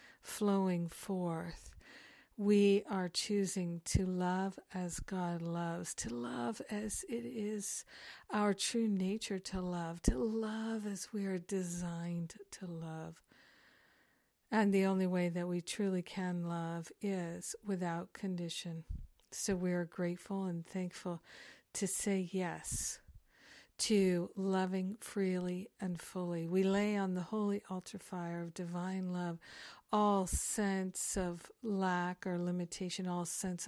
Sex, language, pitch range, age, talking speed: female, English, 175-195 Hz, 50-69, 130 wpm